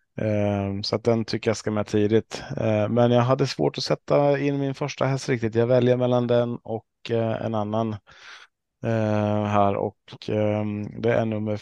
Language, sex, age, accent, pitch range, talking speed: Swedish, male, 20-39, Norwegian, 105-120 Hz, 160 wpm